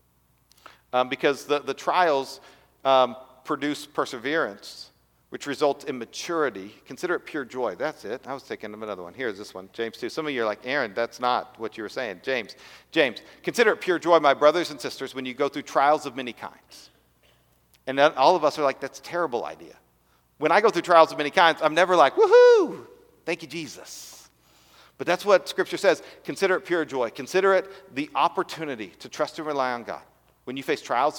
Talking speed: 205 wpm